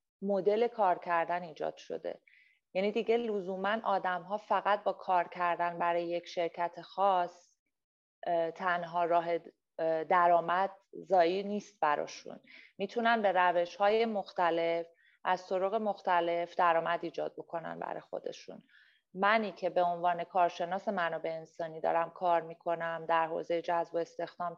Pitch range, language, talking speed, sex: 170-200 Hz, Persian, 125 wpm, female